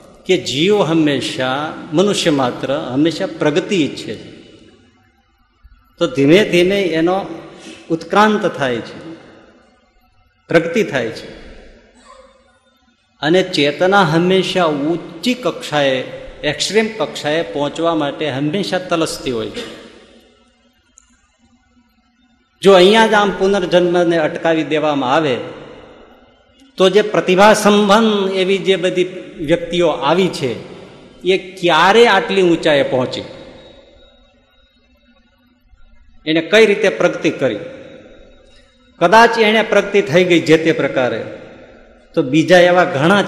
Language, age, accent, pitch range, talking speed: Gujarati, 50-69, native, 150-200 Hz, 85 wpm